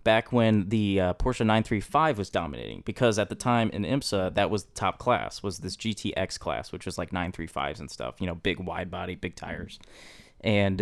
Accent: American